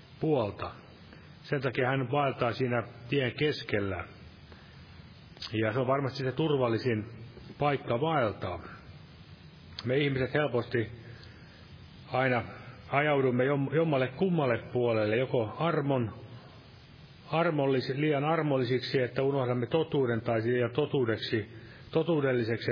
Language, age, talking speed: Finnish, 40-59, 90 wpm